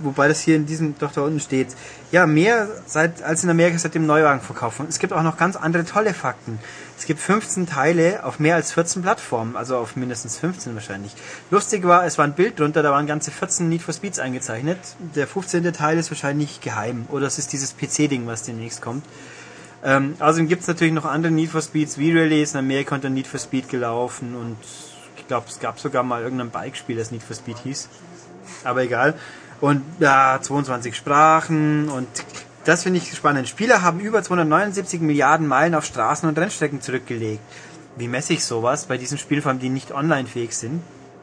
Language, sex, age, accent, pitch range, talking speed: German, male, 30-49, German, 130-165 Hz, 200 wpm